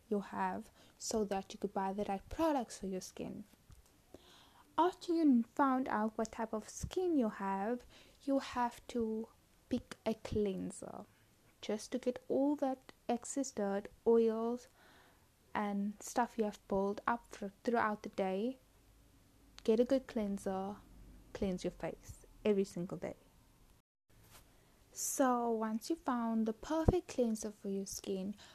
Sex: female